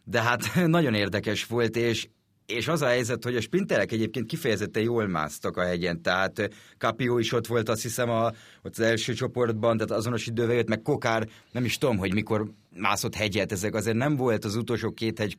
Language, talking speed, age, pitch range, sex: Hungarian, 205 wpm, 30-49, 100-115 Hz, male